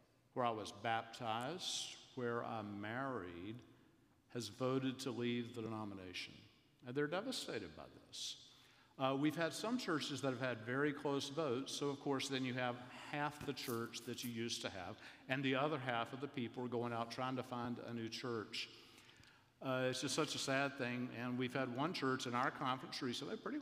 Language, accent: English, American